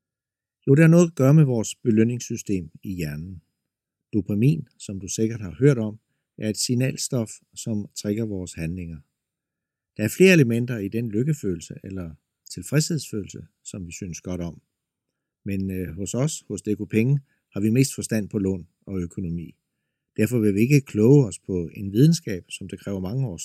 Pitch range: 95-140 Hz